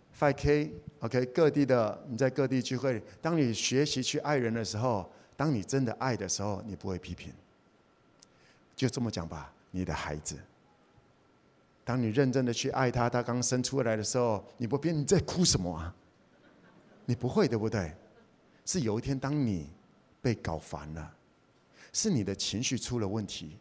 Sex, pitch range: male, 115-165 Hz